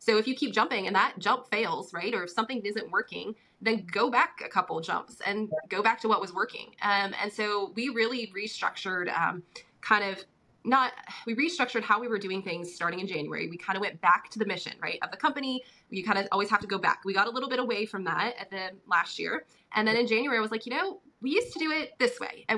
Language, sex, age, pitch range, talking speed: English, female, 20-39, 185-235 Hz, 260 wpm